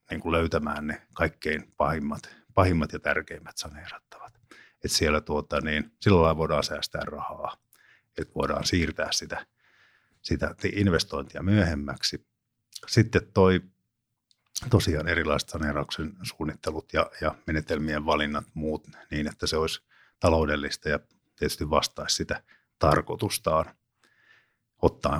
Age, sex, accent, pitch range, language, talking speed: 50-69, male, native, 75-95 Hz, Finnish, 110 wpm